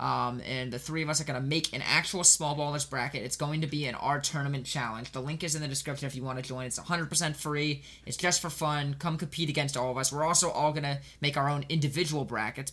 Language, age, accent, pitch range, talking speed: English, 20-39, American, 125-160 Hz, 270 wpm